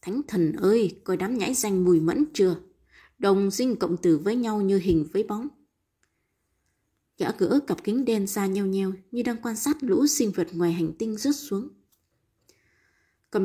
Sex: female